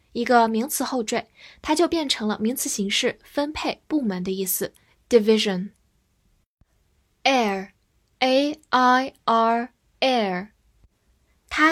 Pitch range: 210-290 Hz